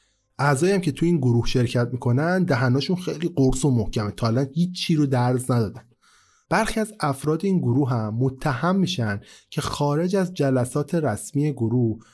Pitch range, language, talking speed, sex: 115-155 Hz, Persian, 170 wpm, male